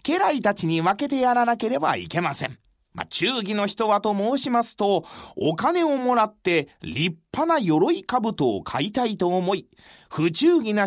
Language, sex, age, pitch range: Japanese, male, 30-49, 185-285 Hz